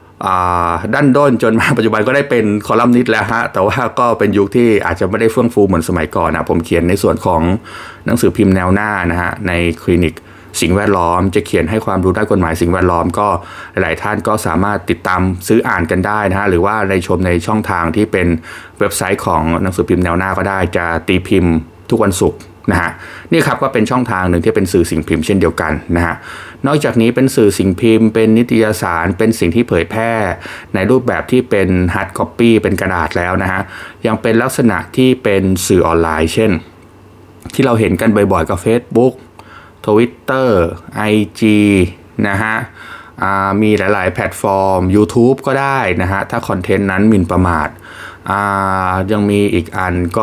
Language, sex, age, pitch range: Thai, male, 20-39, 90-110 Hz